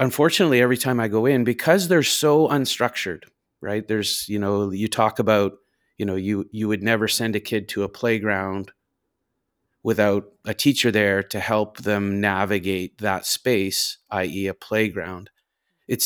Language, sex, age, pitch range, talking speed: English, male, 30-49, 105-125 Hz, 160 wpm